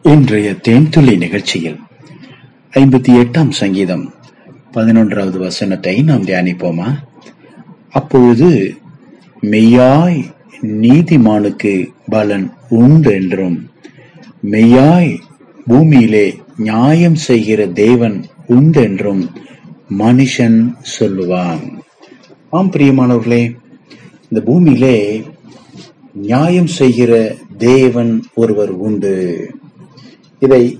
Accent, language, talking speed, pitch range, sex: native, Tamil, 50 wpm, 110-145 Hz, male